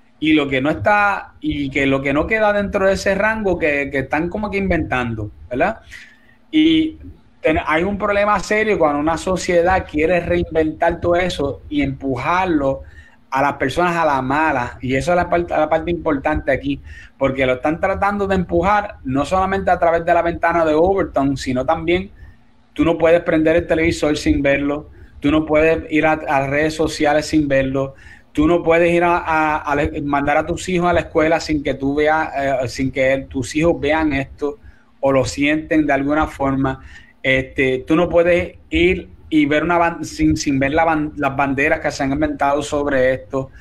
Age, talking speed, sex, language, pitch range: 30-49, 185 wpm, male, Spanish, 135-175 Hz